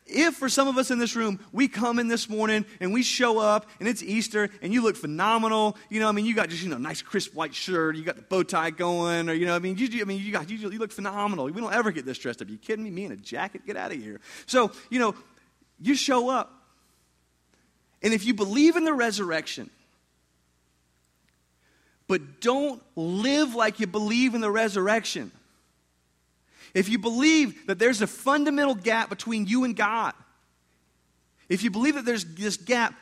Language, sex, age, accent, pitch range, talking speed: English, male, 30-49, American, 160-235 Hz, 215 wpm